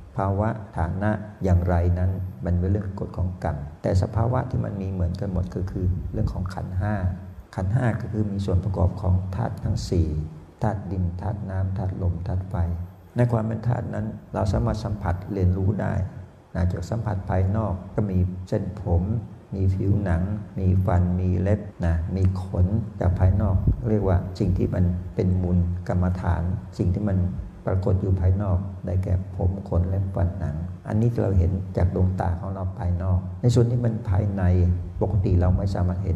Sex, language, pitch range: male, Thai, 90-105 Hz